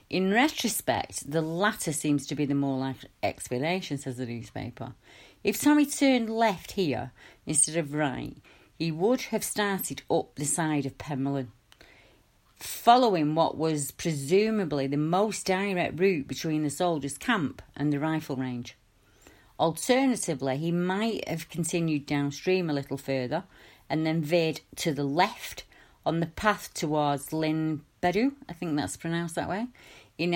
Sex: female